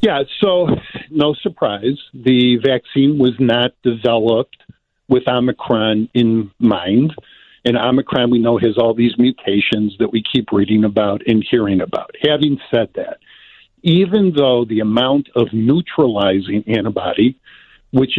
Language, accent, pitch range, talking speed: English, American, 115-150 Hz, 130 wpm